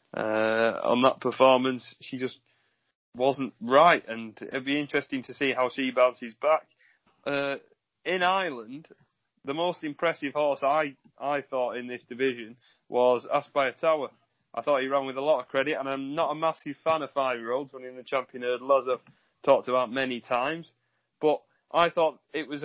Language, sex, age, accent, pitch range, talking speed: English, male, 30-49, British, 125-155 Hz, 185 wpm